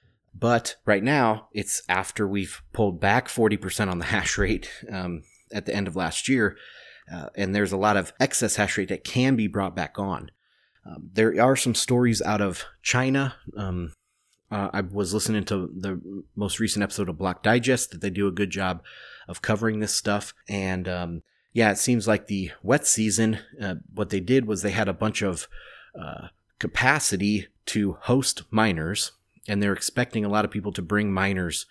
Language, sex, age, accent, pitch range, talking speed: English, male, 30-49, American, 95-115 Hz, 190 wpm